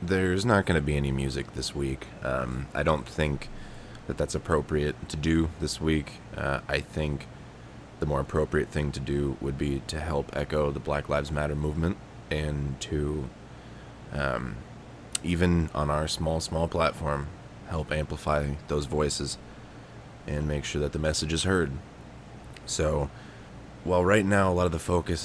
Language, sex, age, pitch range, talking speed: English, male, 20-39, 70-85 Hz, 165 wpm